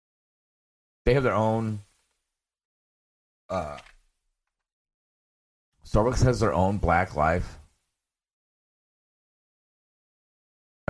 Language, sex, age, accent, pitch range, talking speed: English, male, 30-49, American, 85-115 Hz, 60 wpm